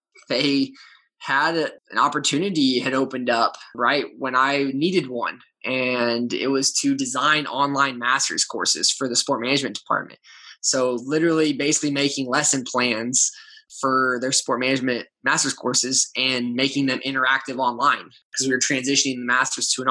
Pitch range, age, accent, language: 130-165 Hz, 10-29, American, English